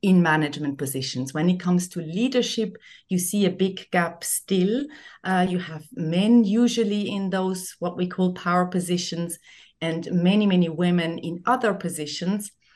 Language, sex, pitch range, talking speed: German, female, 175-235 Hz, 155 wpm